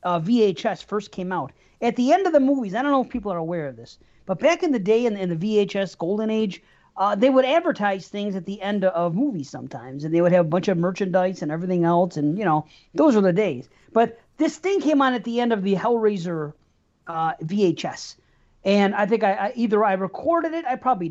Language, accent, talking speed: English, American, 240 wpm